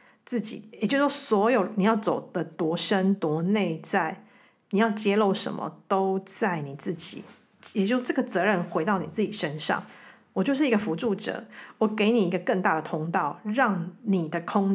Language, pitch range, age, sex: Chinese, 175-215 Hz, 40-59, female